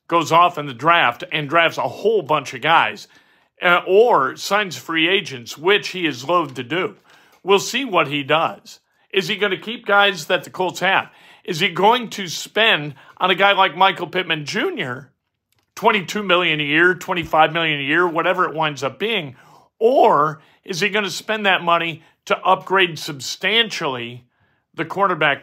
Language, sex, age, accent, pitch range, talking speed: English, male, 50-69, American, 150-185 Hz, 175 wpm